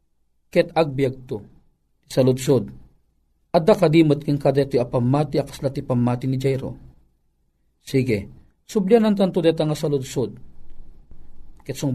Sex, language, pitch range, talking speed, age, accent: male, Filipino, 110-165 Hz, 115 wpm, 40-59, native